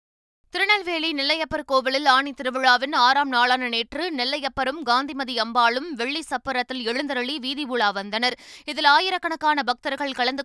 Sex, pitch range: female, 250-300 Hz